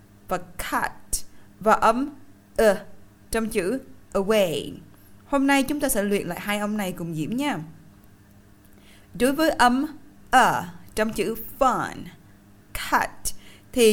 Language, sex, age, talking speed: Vietnamese, female, 20-39, 140 wpm